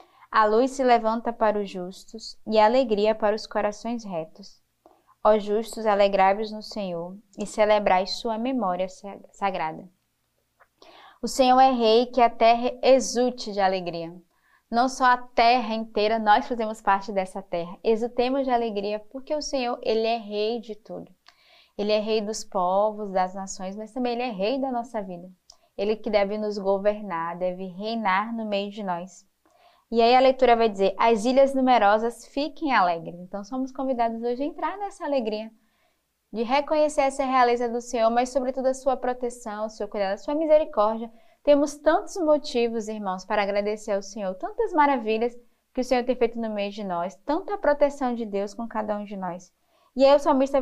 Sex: female